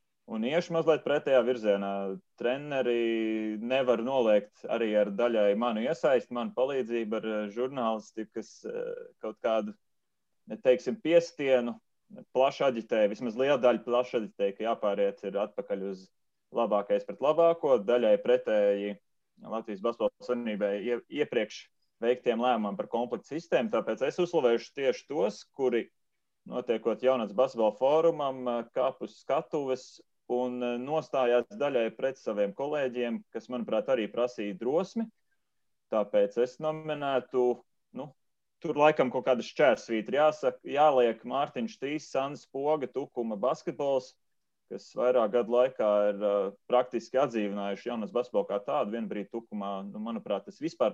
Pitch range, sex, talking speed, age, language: 110-145 Hz, male, 125 wpm, 30-49, English